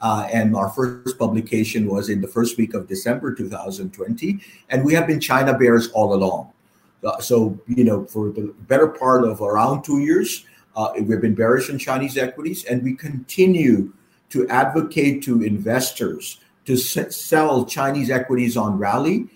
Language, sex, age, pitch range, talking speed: English, male, 50-69, 110-135 Hz, 165 wpm